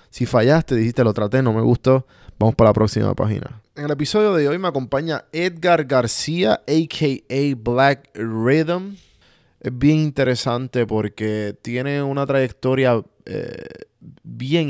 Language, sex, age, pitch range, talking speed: Spanish, male, 20-39, 110-140 Hz, 140 wpm